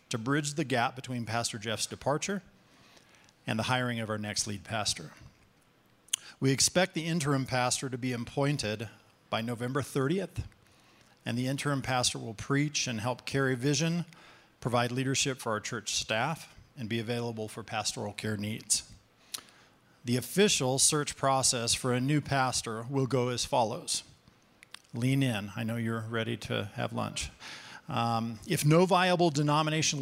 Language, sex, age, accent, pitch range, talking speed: English, male, 50-69, American, 115-145 Hz, 150 wpm